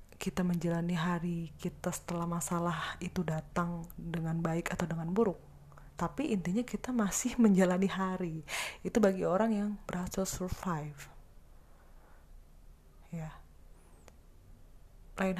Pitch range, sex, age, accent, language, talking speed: 140-190 Hz, female, 20-39, native, Indonesian, 105 wpm